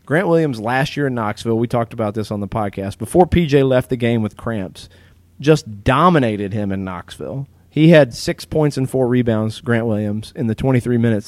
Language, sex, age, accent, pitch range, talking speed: English, male, 30-49, American, 100-135 Hz, 200 wpm